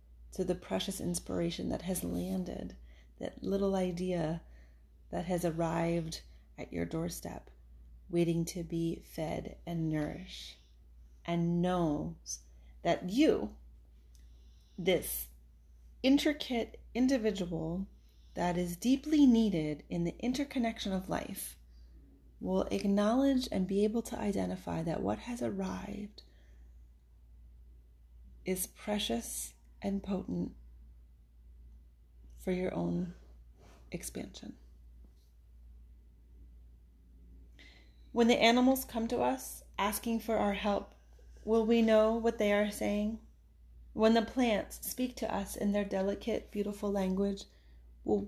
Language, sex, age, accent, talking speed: English, female, 30-49, American, 105 wpm